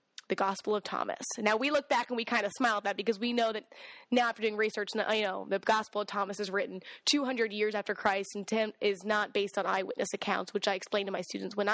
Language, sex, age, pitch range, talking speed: English, female, 10-29, 210-270 Hz, 250 wpm